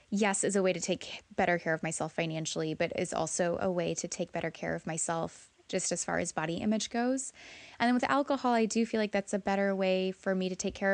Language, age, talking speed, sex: English, 20-39, 250 wpm, female